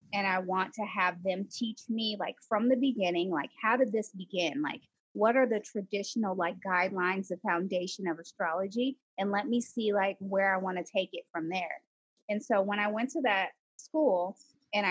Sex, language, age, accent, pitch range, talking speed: female, English, 20-39, American, 190-240 Hz, 200 wpm